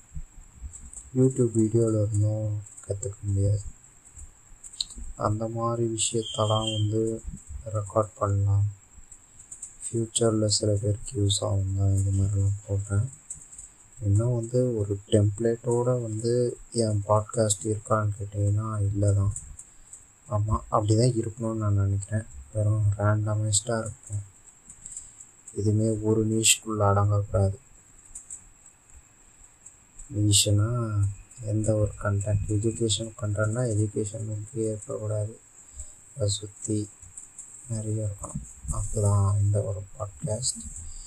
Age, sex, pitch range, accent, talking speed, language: 20-39, male, 100-115 Hz, native, 80 wpm, Tamil